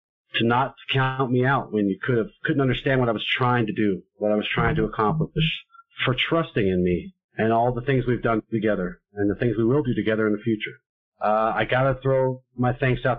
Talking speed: 235 wpm